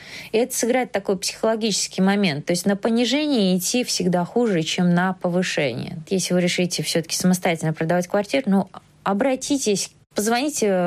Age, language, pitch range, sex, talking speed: 20-39, Russian, 175-225 Hz, female, 145 wpm